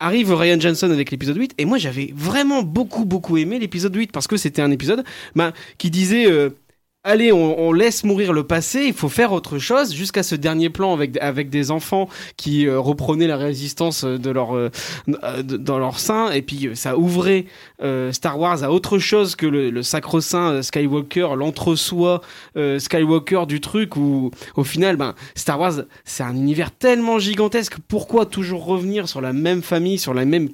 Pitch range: 145-185 Hz